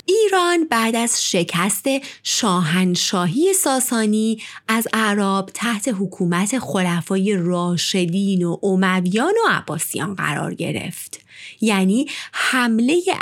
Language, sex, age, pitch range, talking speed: Persian, female, 30-49, 185-290 Hz, 90 wpm